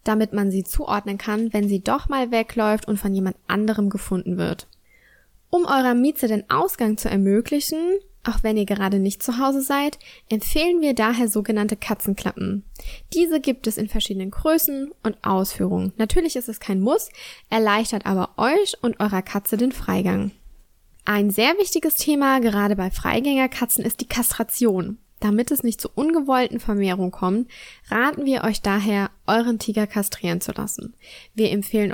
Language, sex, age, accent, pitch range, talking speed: German, female, 10-29, German, 200-260 Hz, 160 wpm